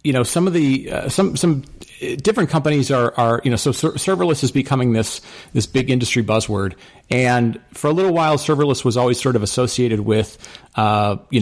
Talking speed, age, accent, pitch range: 200 wpm, 40-59, American, 105-130 Hz